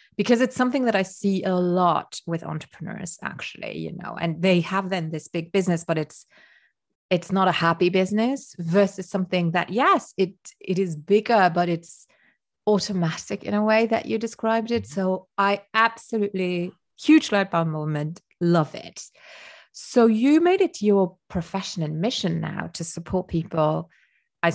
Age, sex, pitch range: 30-49, female, 160-205 Hz